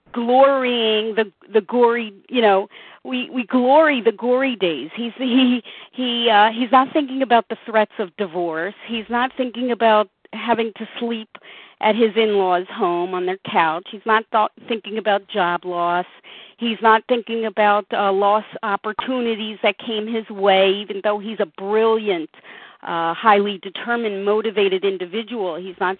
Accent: American